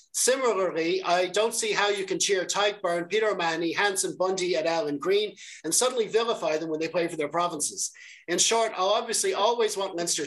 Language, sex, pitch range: English, male, 165-205 Hz